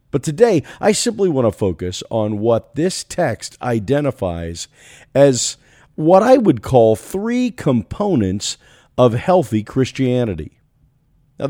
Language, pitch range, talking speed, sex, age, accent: English, 120-185 Hz, 120 wpm, male, 50-69, American